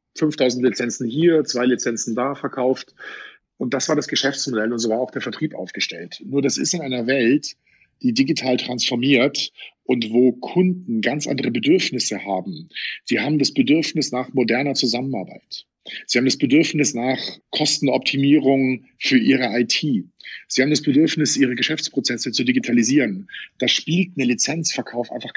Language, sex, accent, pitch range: German, male, German, 125-155 Hz